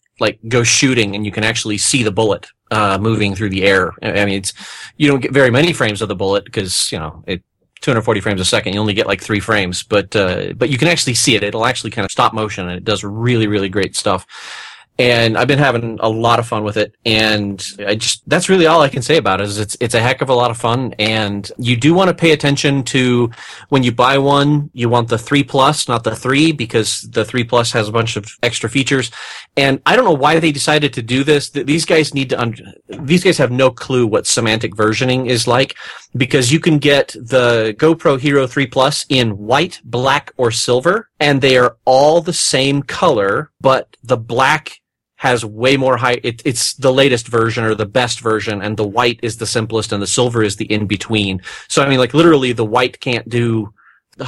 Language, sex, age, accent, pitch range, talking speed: English, male, 30-49, American, 110-135 Hz, 225 wpm